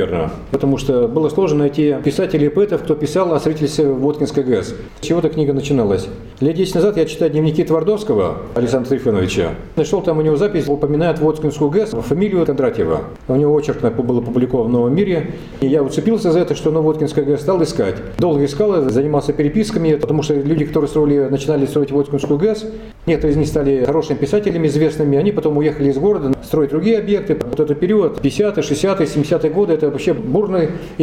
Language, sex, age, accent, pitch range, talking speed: Russian, male, 40-59, native, 140-165 Hz, 185 wpm